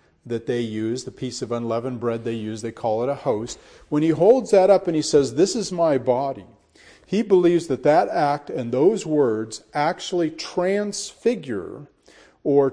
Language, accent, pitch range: English, American, 110-150 Hz